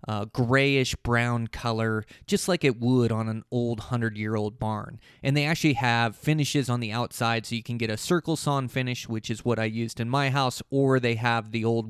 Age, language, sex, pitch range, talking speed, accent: 20-39, English, male, 110-130 Hz, 205 wpm, American